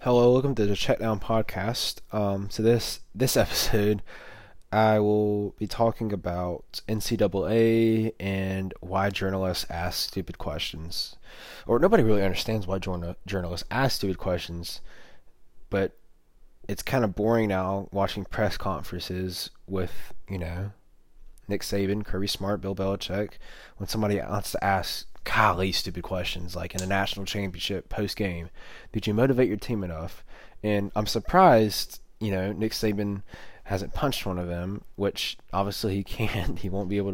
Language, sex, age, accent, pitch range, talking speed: English, male, 20-39, American, 90-110 Hz, 150 wpm